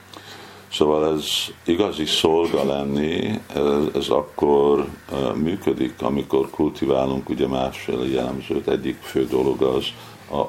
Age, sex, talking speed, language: 50-69, male, 110 wpm, Hungarian